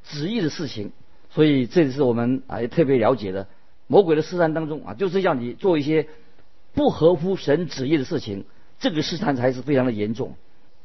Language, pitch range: Chinese, 125-165 Hz